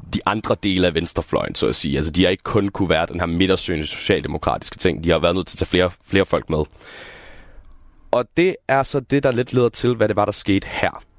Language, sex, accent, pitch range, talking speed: Danish, male, native, 95-120 Hz, 245 wpm